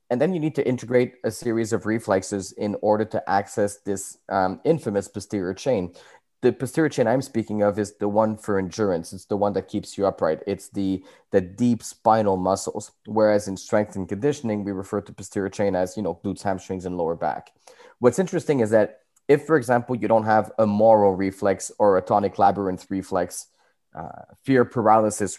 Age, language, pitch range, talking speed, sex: 20-39, English, 100-120 Hz, 195 wpm, male